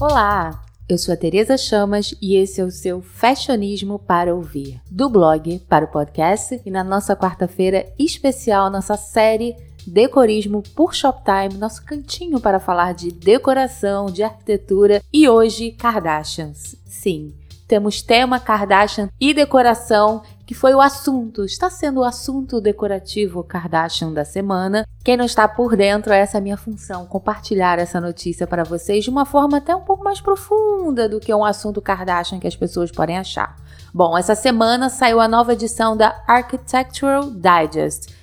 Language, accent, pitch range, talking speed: Portuguese, Brazilian, 185-245 Hz, 160 wpm